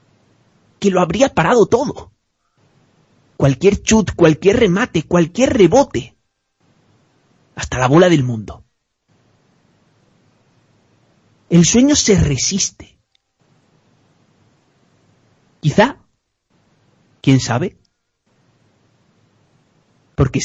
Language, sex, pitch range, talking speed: Spanish, male, 130-185 Hz, 70 wpm